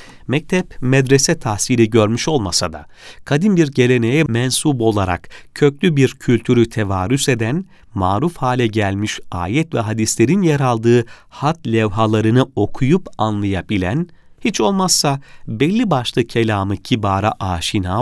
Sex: male